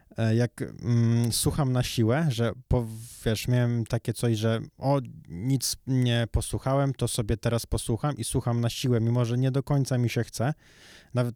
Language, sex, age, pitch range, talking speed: Polish, male, 20-39, 115-135 Hz, 165 wpm